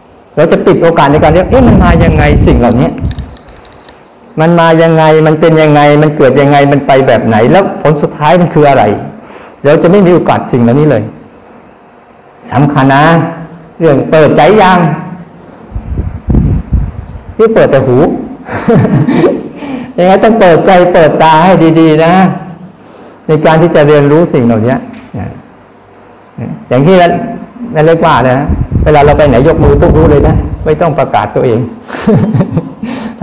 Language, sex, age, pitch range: Thai, male, 60-79, 135-185 Hz